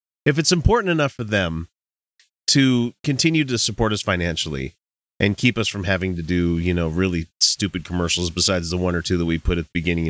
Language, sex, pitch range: English, male, 85-130 Hz